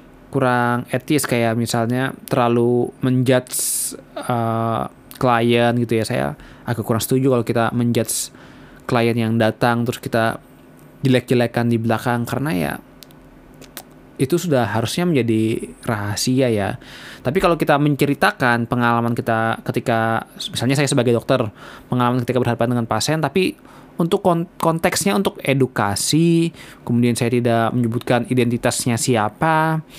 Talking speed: 120 wpm